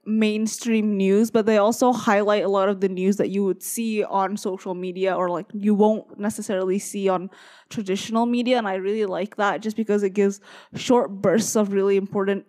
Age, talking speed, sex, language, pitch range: 10-29, 195 wpm, female, English, 195-230 Hz